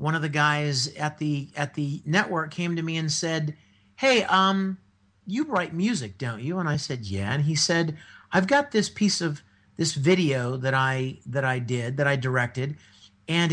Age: 50-69